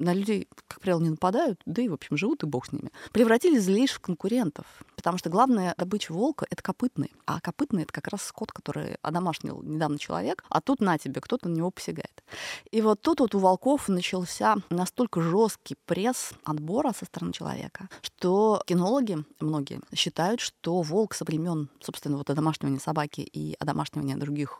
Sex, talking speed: female, 180 wpm